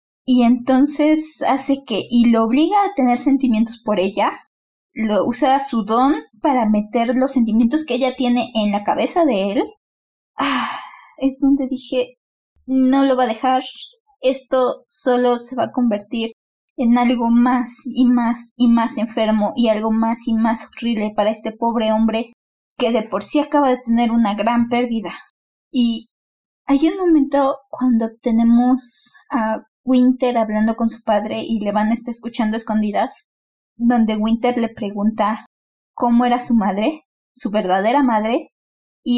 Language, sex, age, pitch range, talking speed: Spanish, female, 20-39, 225-260 Hz, 155 wpm